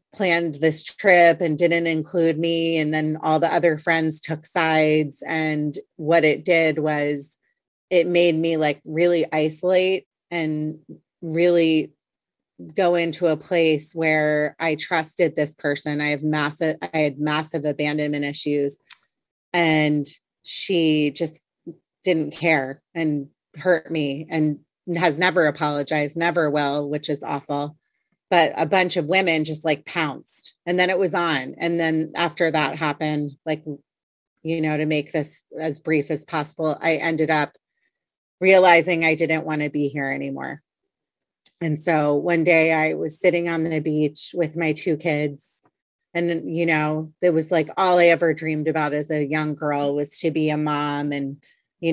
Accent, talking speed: American, 160 wpm